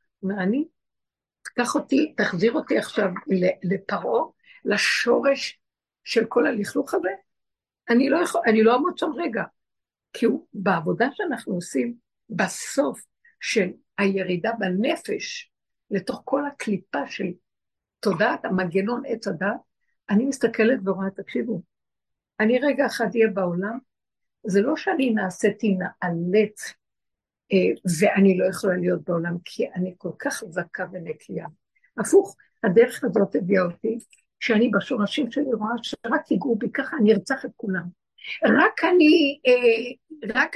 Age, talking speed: 60-79, 115 wpm